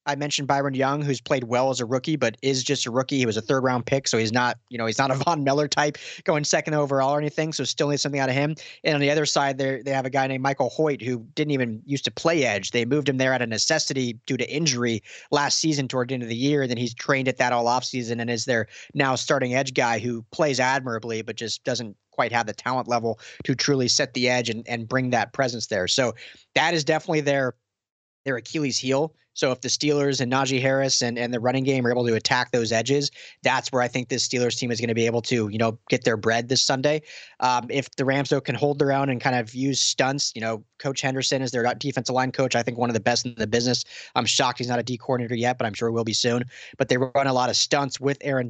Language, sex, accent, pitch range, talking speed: English, male, American, 120-140 Hz, 275 wpm